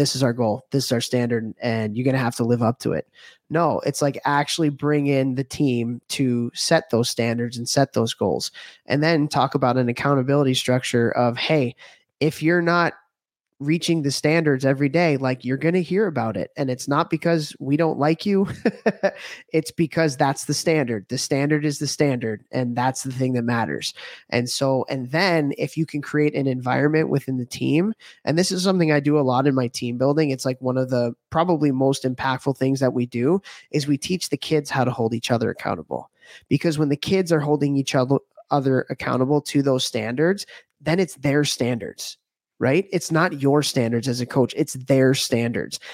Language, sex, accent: English, male, American